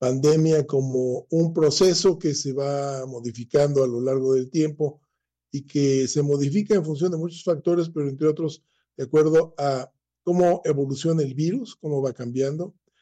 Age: 40-59